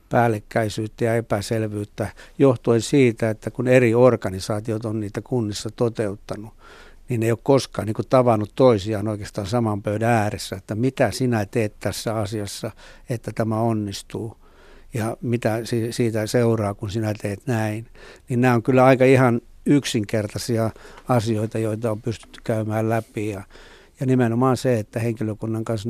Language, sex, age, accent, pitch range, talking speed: Finnish, male, 60-79, native, 110-125 Hz, 145 wpm